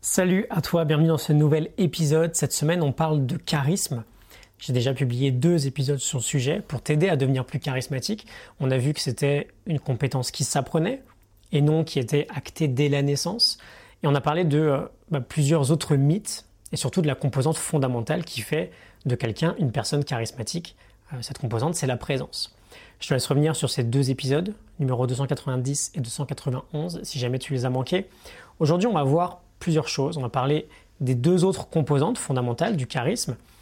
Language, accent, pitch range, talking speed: French, French, 130-165 Hz, 195 wpm